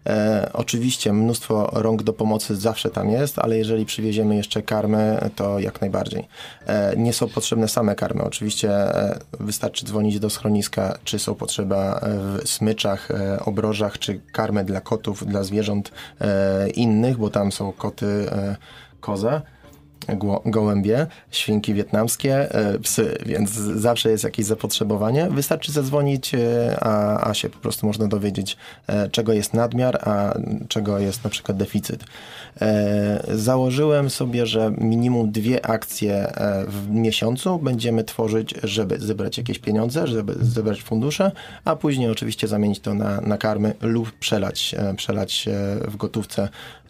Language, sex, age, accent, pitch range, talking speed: Polish, male, 20-39, native, 105-115 Hz, 130 wpm